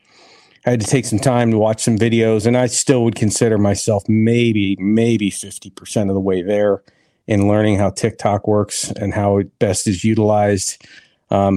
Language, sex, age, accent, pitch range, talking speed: English, male, 50-69, American, 105-125 Hz, 180 wpm